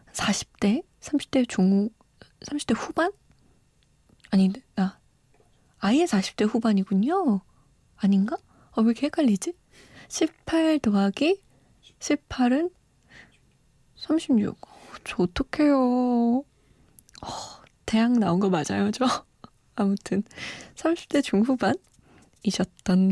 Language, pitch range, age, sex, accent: Korean, 195-265 Hz, 20-39, female, native